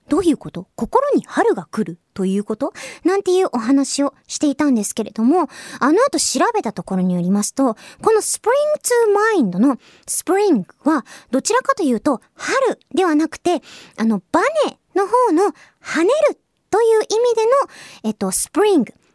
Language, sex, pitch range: Japanese, male, 215-360 Hz